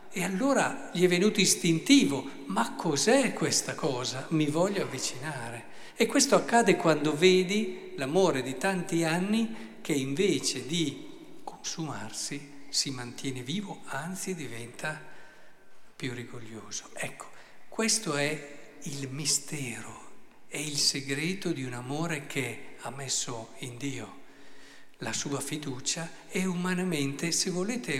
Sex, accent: male, native